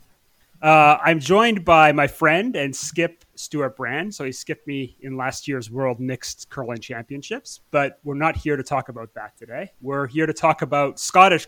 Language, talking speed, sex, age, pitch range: English, 190 wpm, male, 30-49, 125-155 Hz